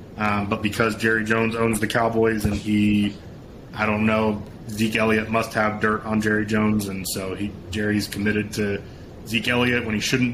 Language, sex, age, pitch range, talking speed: English, male, 20-39, 100-115 Hz, 185 wpm